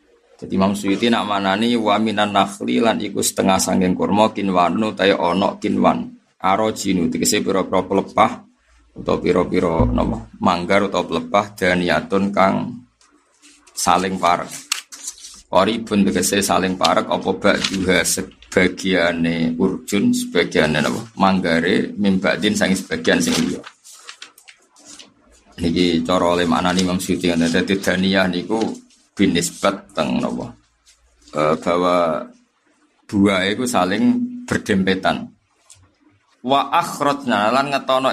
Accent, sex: native, male